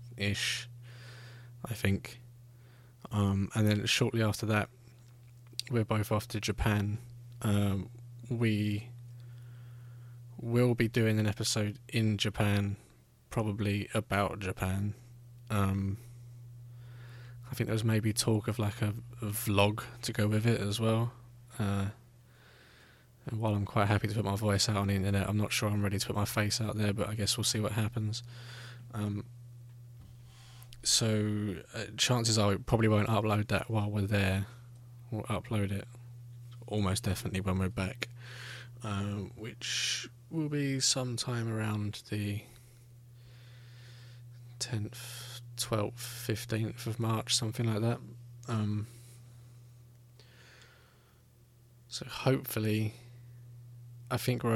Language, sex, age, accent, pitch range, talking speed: English, male, 20-39, British, 105-120 Hz, 130 wpm